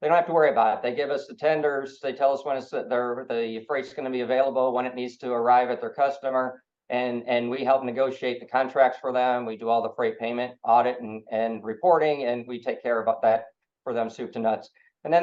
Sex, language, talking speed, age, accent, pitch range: male, English, 250 wpm, 50-69, American, 115-130 Hz